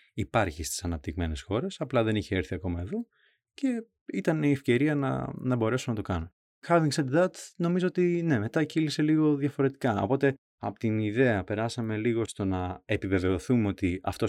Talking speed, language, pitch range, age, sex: 170 wpm, Greek, 95-150 Hz, 20-39, male